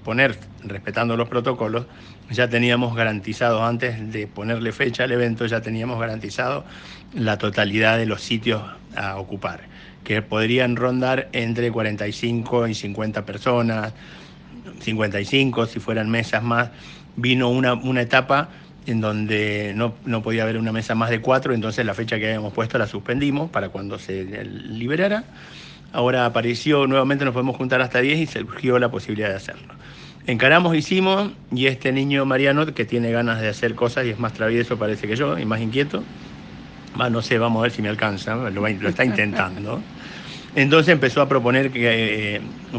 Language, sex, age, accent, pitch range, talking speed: Spanish, male, 50-69, Argentinian, 110-130 Hz, 165 wpm